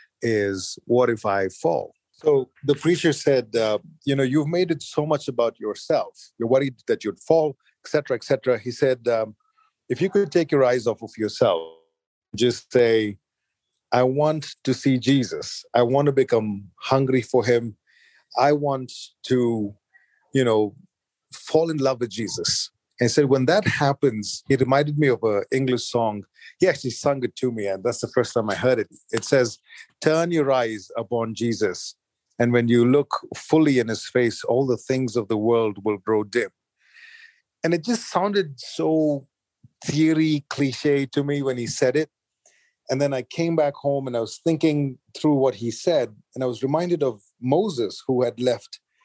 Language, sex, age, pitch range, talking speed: English, male, 40-59, 115-150 Hz, 180 wpm